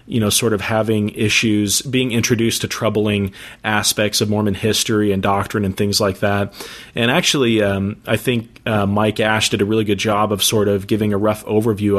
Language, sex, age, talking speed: English, male, 30-49, 200 wpm